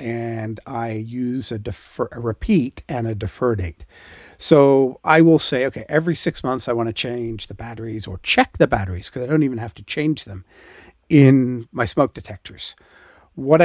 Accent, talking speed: American, 185 wpm